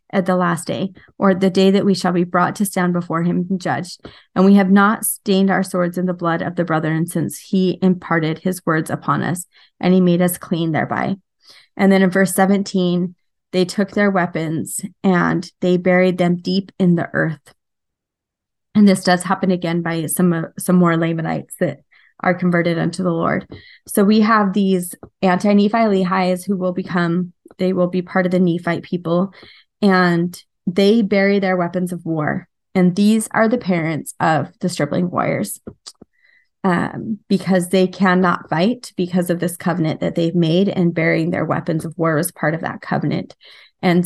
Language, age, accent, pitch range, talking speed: English, 20-39, American, 170-190 Hz, 185 wpm